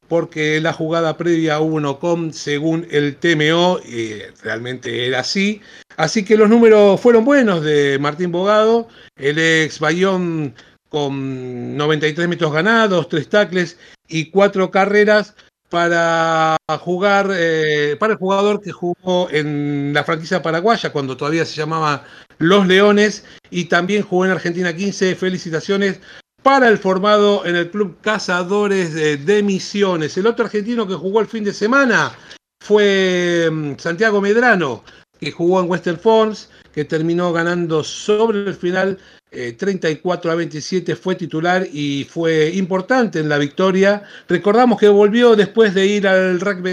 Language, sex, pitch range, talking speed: Spanish, male, 160-205 Hz, 145 wpm